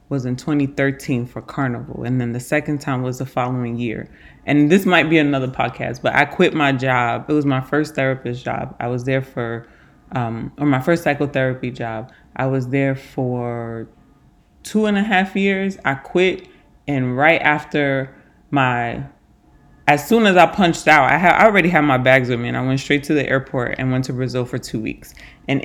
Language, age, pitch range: English, 20-39, 130-160 Hz